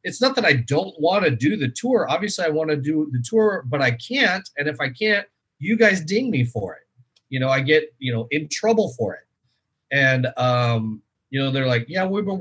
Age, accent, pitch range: 30-49, American, 120-150 Hz